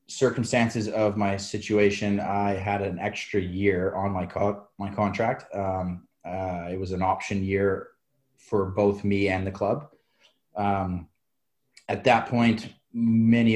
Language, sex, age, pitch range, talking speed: English, male, 30-49, 95-105 Hz, 140 wpm